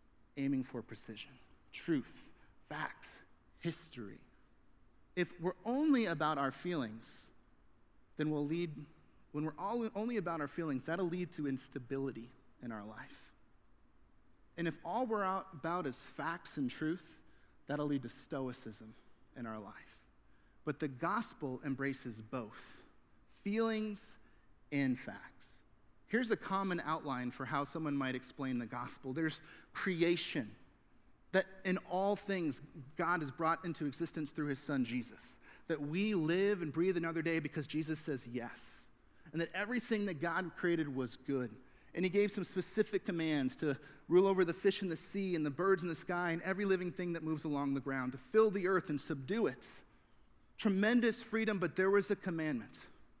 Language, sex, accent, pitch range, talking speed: English, male, American, 135-185 Hz, 160 wpm